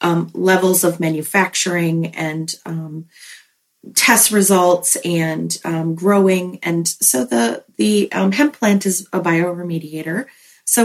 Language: English